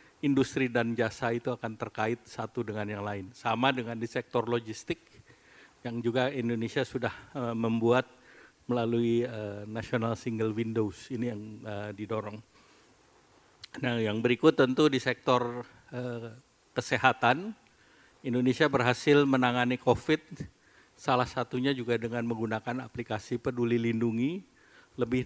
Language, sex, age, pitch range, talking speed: Indonesian, male, 50-69, 115-130 Hz, 120 wpm